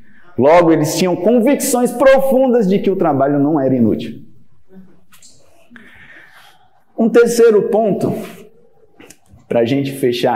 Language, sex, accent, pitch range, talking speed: Portuguese, male, Brazilian, 140-225 Hz, 110 wpm